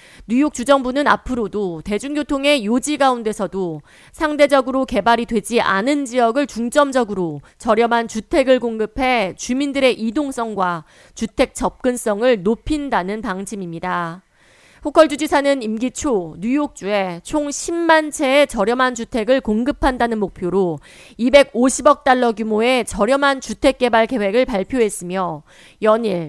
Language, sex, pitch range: Korean, female, 205-275 Hz